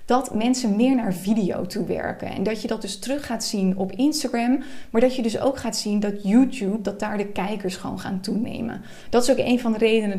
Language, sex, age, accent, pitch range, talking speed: Dutch, female, 20-39, Dutch, 195-240 Hz, 235 wpm